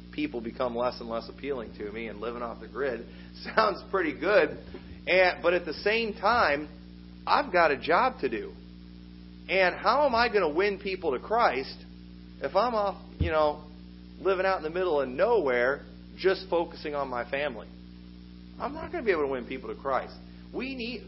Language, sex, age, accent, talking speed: English, male, 40-59, American, 195 wpm